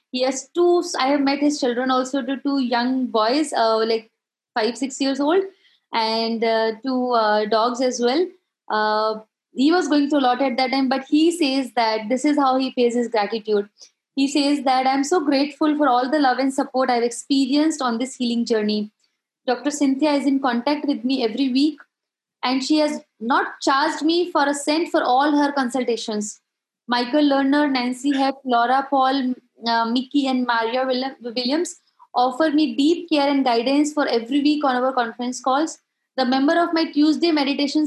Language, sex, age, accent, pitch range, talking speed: English, female, 20-39, Indian, 245-295 Hz, 185 wpm